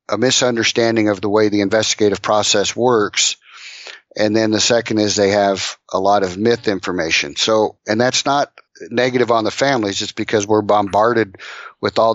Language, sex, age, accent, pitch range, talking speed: English, male, 50-69, American, 105-120 Hz, 175 wpm